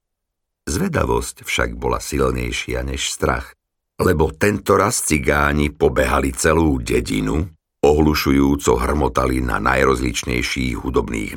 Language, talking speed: Slovak, 95 wpm